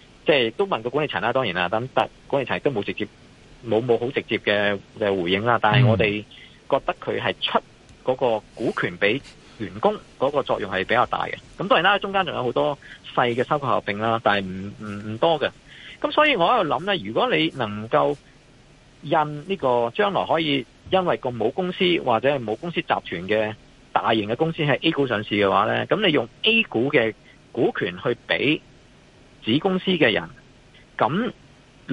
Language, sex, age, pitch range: Chinese, male, 50-69, 105-155 Hz